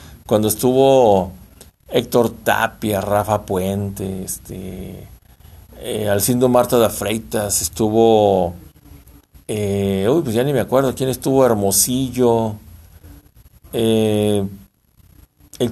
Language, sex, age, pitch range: Spanish, male, 50-69, 95-130 Hz